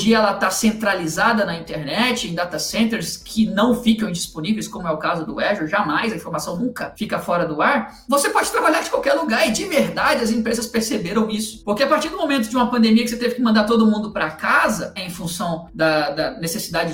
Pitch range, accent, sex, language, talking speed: 205-260 Hz, Brazilian, male, Portuguese, 220 wpm